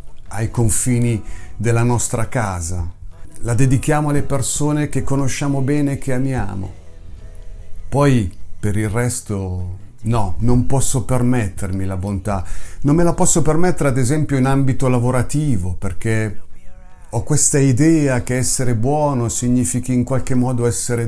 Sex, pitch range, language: male, 100-140 Hz, Italian